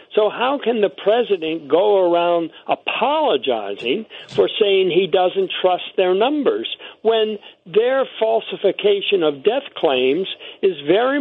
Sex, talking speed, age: male, 125 wpm, 60-79